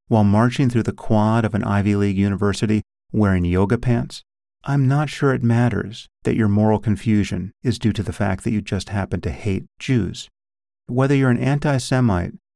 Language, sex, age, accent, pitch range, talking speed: English, male, 40-59, American, 100-130 Hz, 180 wpm